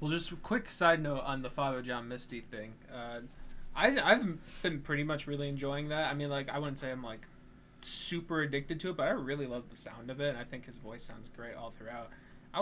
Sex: male